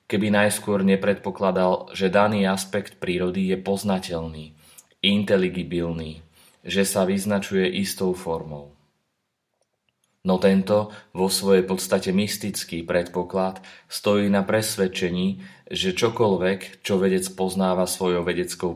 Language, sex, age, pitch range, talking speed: Slovak, male, 30-49, 90-100 Hz, 100 wpm